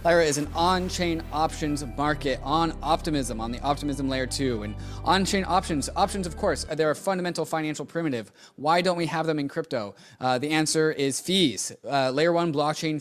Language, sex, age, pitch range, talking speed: English, male, 20-39, 125-155 Hz, 185 wpm